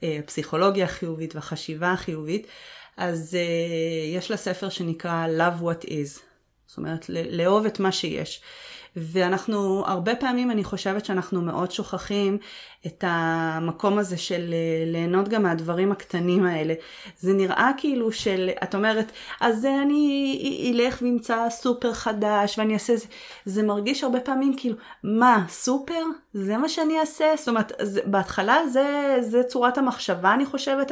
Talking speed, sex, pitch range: 145 wpm, female, 185-245 Hz